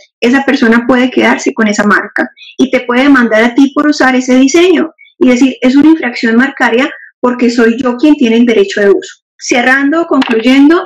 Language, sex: Spanish, female